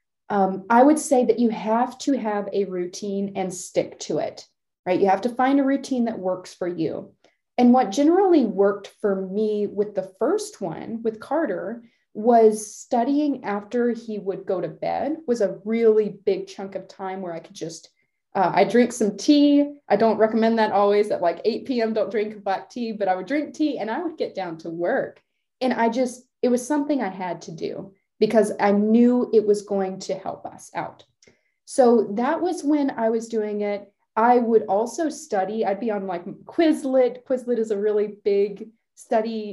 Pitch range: 195-250 Hz